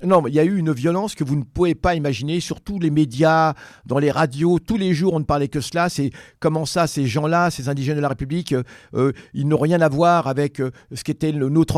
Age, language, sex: 50-69, French, male